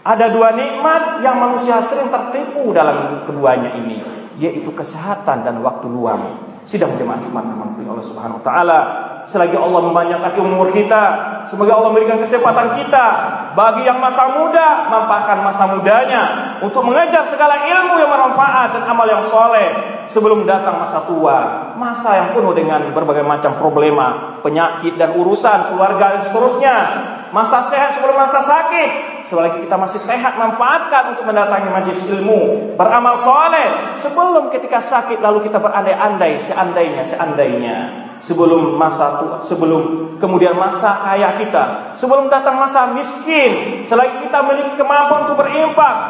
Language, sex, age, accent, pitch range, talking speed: Indonesian, male, 40-59, native, 185-275 Hz, 140 wpm